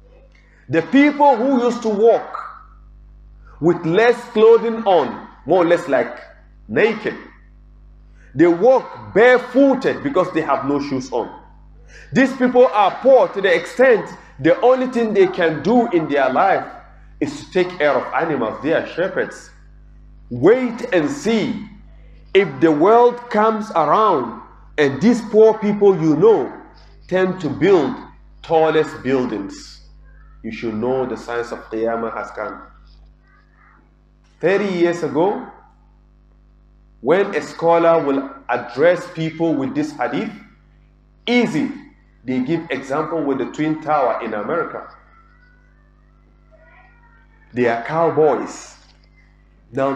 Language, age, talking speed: English, 40-59, 125 wpm